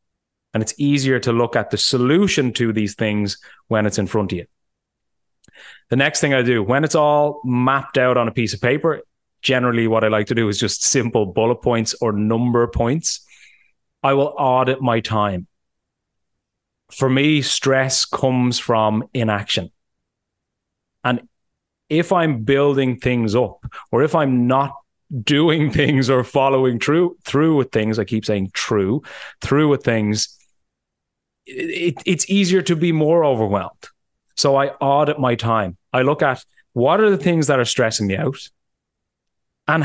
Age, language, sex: 30-49, English, male